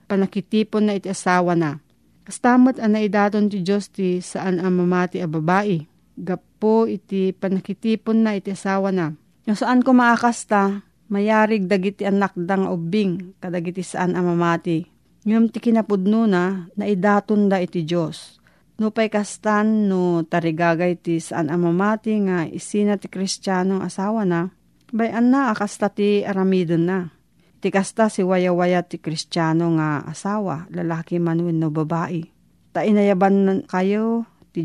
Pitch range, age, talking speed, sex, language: 175-210 Hz, 40-59, 130 wpm, female, Filipino